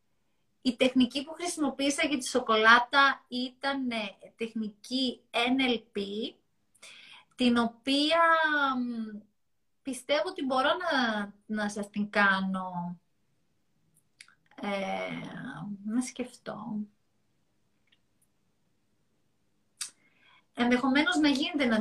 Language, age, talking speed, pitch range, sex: Greek, 30-49, 70 wpm, 190-260 Hz, female